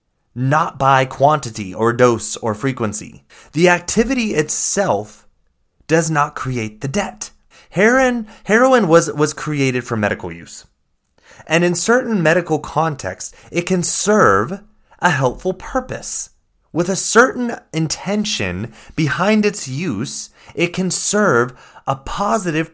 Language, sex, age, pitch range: English, male, 30-49, 125-180 Hz